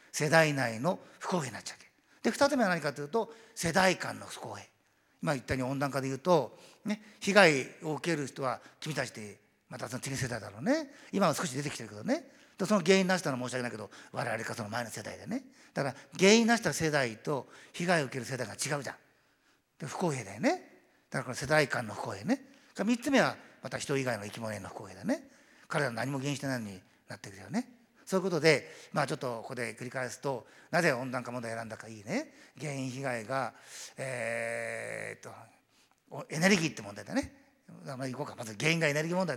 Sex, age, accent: male, 50-69, native